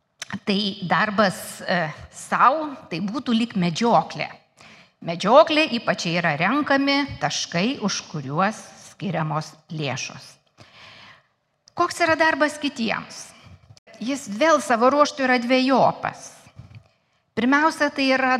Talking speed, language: 90 wpm, English